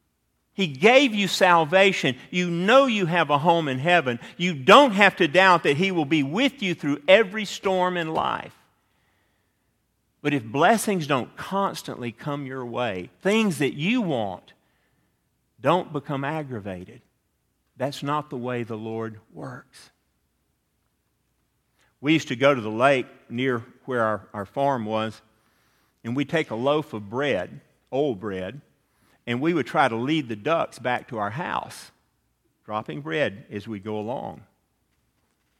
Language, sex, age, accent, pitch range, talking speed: English, male, 50-69, American, 120-185 Hz, 155 wpm